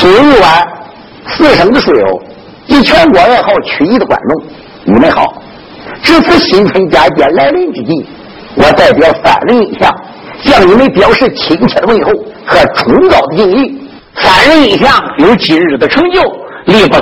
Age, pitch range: 60-79, 245-355 Hz